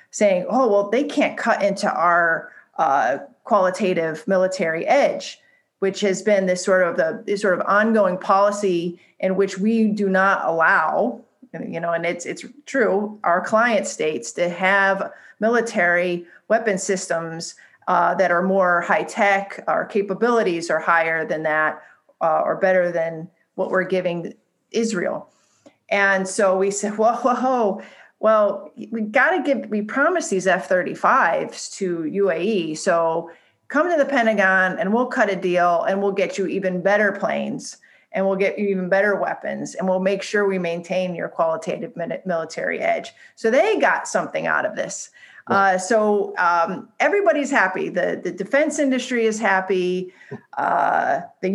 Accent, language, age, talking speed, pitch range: American, English, 40-59, 160 wpm, 180-220 Hz